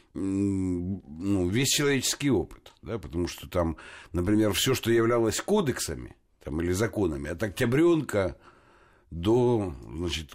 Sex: male